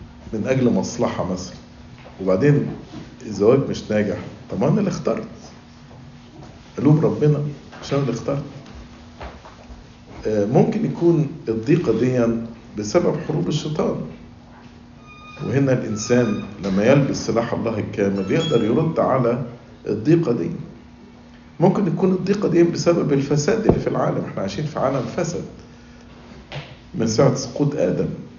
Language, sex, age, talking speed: English, male, 50-69, 110 wpm